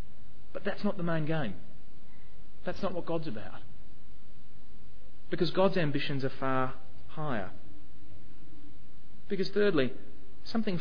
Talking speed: 110 wpm